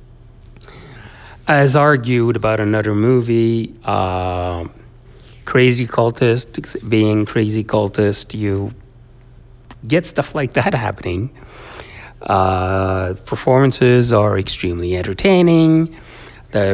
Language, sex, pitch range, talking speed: English, male, 100-125 Hz, 80 wpm